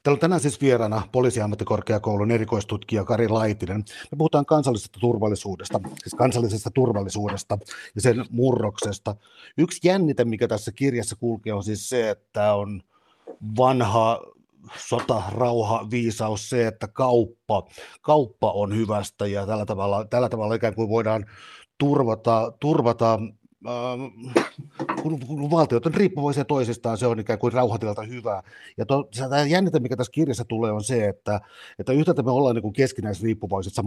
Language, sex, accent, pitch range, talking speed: Finnish, male, native, 105-130 Hz, 140 wpm